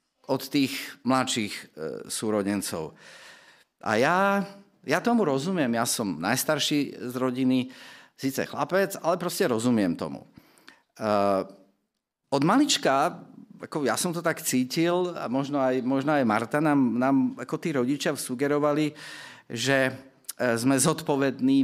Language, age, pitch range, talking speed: Slovak, 50-69, 115-145 Hz, 130 wpm